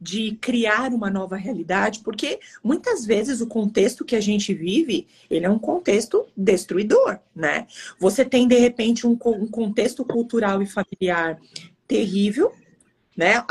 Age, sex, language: 40-59, female, Portuguese